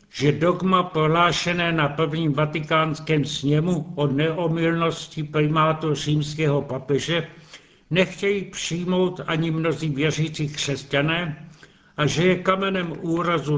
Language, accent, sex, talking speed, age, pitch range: Czech, native, male, 100 wpm, 70-89, 145-175 Hz